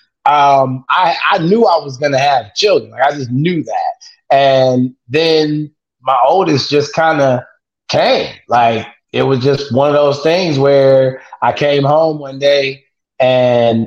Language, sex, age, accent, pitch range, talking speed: English, male, 20-39, American, 125-150 Hz, 165 wpm